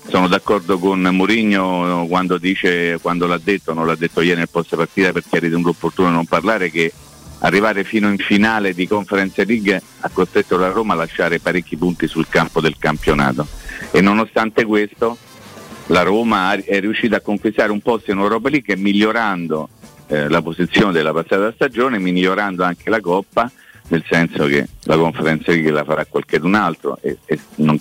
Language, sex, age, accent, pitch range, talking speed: Italian, male, 50-69, native, 85-105 Hz, 170 wpm